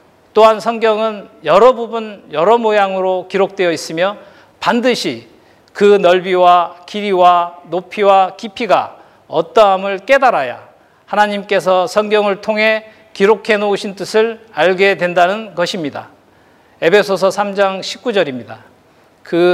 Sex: male